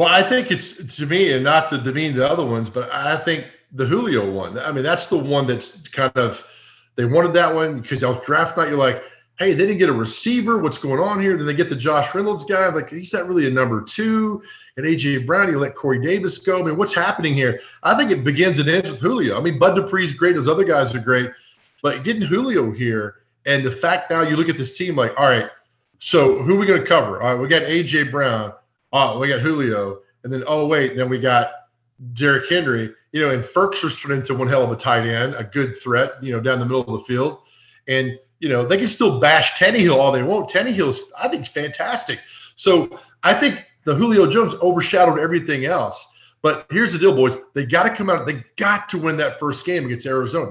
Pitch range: 130-175 Hz